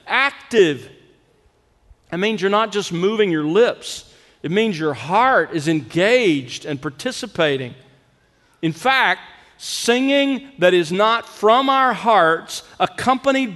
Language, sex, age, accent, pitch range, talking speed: English, male, 50-69, American, 155-215 Hz, 120 wpm